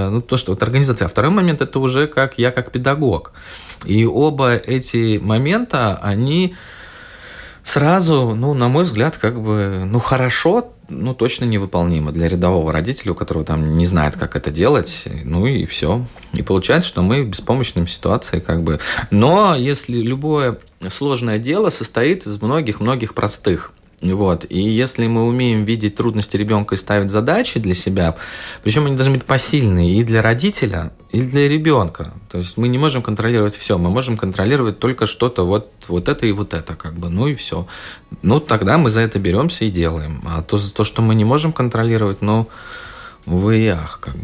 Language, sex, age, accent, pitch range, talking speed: Russian, male, 30-49, native, 95-130 Hz, 180 wpm